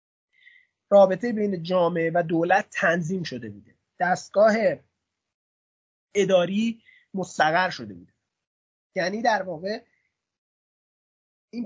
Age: 30-49